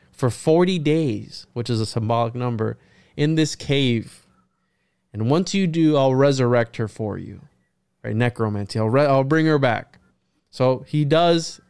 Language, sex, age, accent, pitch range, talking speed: English, male, 20-39, American, 120-150 Hz, 160 wpm